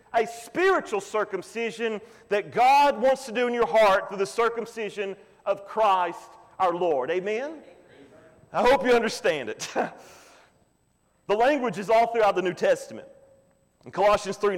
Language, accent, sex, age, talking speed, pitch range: English, American, male, 40-59, 140 wpm, 210-290 Hz